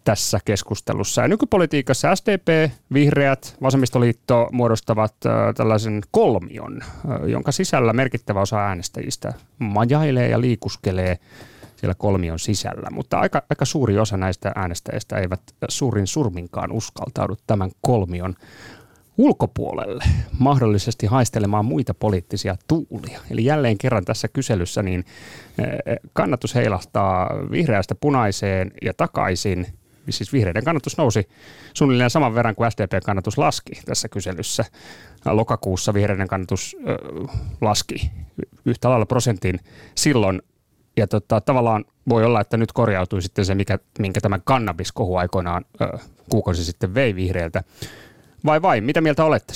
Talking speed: 115 wpm